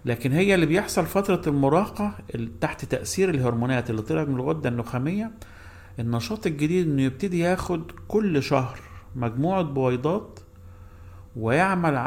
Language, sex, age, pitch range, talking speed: Arabic, male, 50-69, 95-155 Hz, 120 wpm